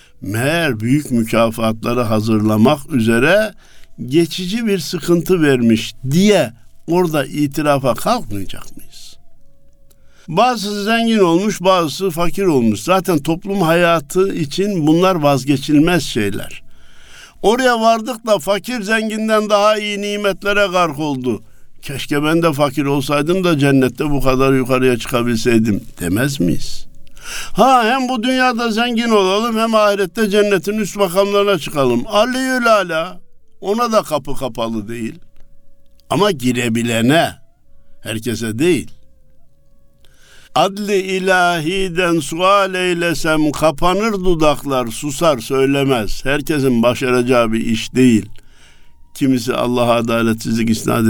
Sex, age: male, 60-79